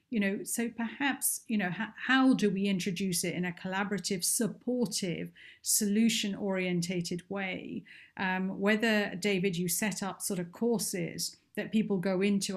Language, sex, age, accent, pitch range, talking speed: English, female, 50-69, British, 180-215 Hz, 150 wpm